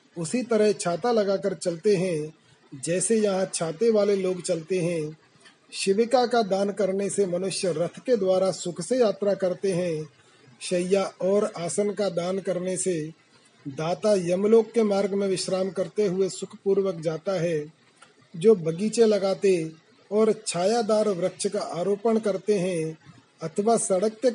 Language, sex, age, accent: Hindi, male, 40-59, native